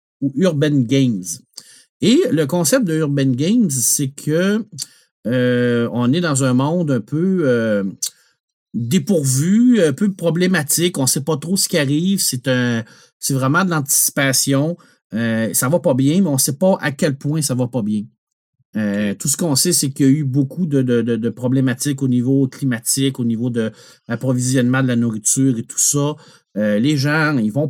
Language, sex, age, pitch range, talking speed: French, male, 50-69, 125-170 Hz, 190 wpm